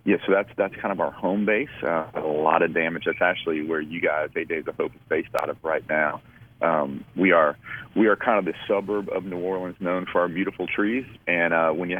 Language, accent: English, American